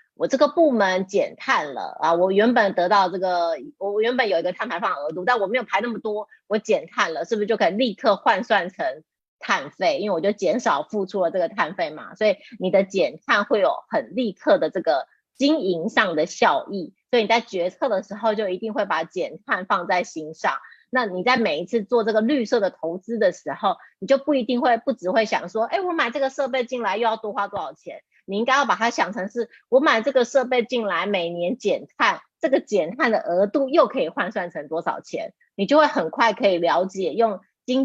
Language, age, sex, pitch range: Chinese, 30-49, female, 190-260 Hz